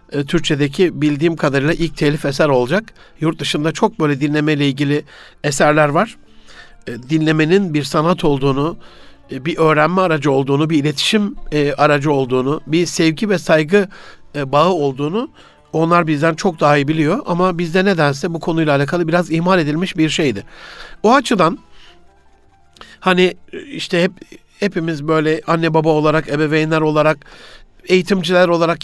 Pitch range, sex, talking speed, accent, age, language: 150-190 Hz, male, 130 wpm, native, 60-79, Turkish